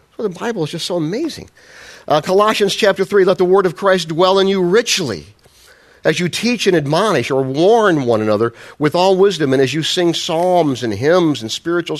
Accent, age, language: American, 50-69, English